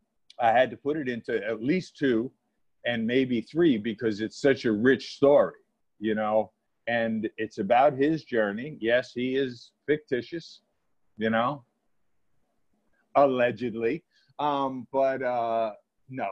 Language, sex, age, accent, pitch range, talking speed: English, male, 50-69, American, 115-140 Hz, 130 wpm